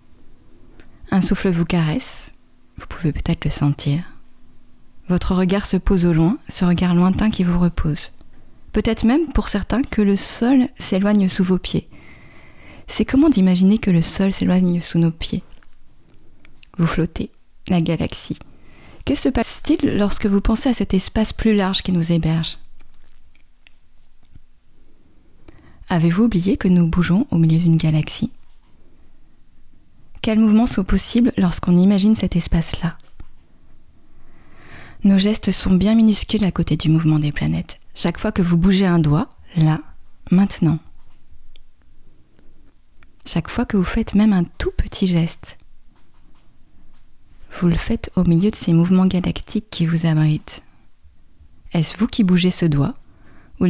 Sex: female